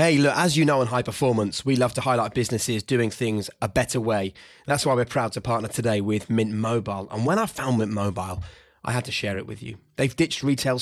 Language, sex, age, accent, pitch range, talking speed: English, male, 20-39, British, 105-140 Hz, 245 wpm